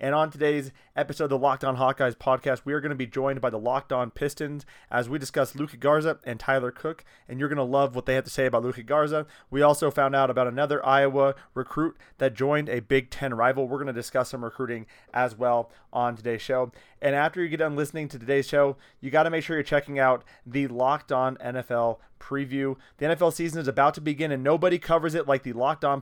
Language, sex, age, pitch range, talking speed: English, male, 30-49, 130-150 Hz, 240 wpm